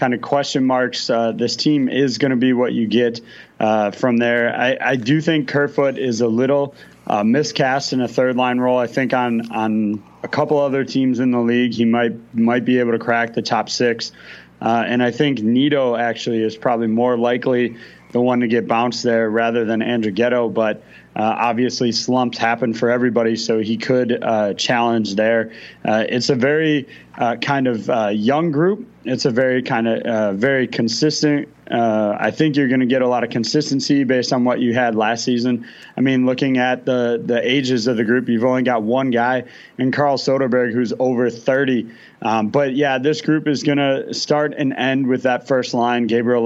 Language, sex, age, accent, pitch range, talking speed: English, male, 30-49, American, 115-130 Hz, 205 wpm